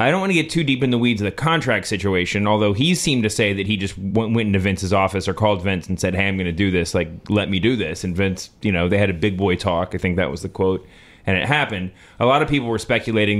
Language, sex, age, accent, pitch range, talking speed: English, male, 30-49, American, 100-125 Hz, 305 wpm